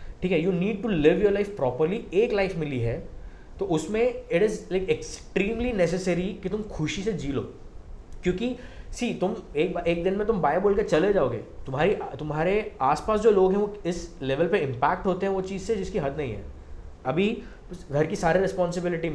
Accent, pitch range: native, 140-195 Hz